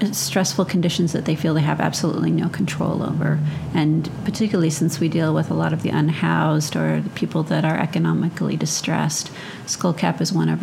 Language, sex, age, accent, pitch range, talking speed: English, female, 40-59, American, 145-175 Hz, 185 wpm